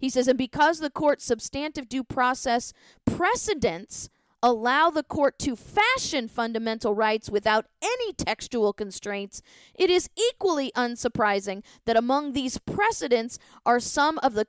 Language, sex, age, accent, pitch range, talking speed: English, female, 40-59, American, 210-275 Hz, 135 wpm